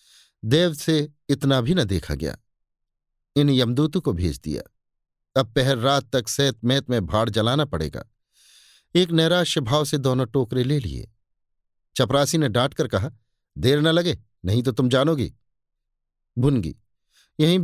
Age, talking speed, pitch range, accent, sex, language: 50-69, 145 wpm, 110-150 Hz, native, male, Hindi